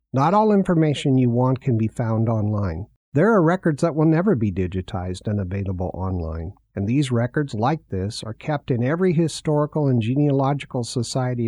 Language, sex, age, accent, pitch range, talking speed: English, male, 50-69, American, 115-150 Hz, 175 wpm